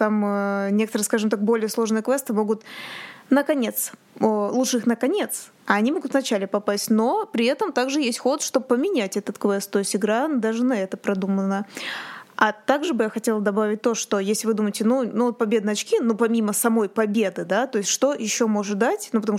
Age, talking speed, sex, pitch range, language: 20-39, 195 wpm, female, 210-235 Hz, Russian